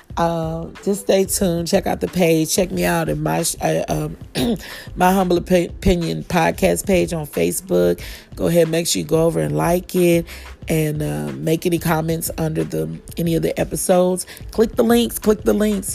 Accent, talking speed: American, 190 wpm